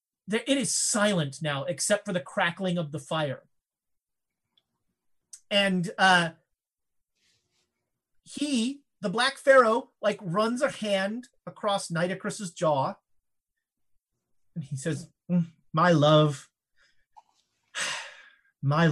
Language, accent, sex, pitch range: English, American, male, 160-225 Hz